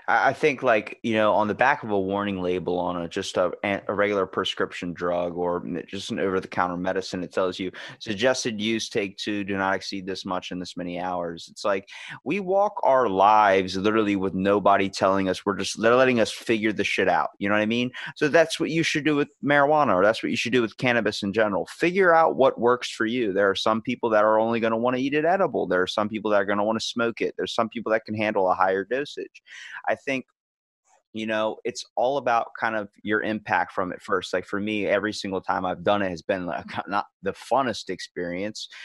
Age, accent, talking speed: 20-39, American, 240 wpm